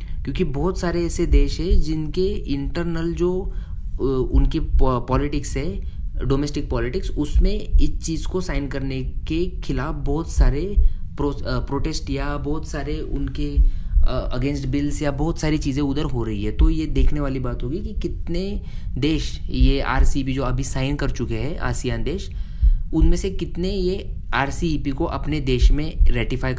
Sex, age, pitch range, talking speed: male, 20-39, 100-150 Hz, 160 wpm